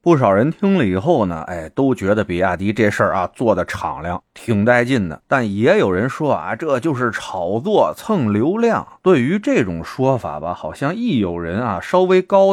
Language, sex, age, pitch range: Chinese, male, 30-49, 90-135 Hz